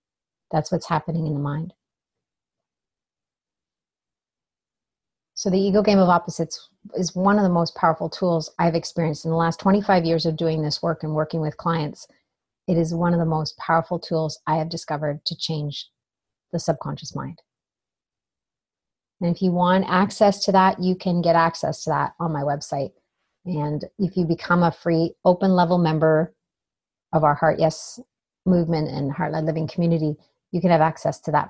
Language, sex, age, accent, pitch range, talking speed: English, female, 30-49, American, 155-180 Hz, 170 wpm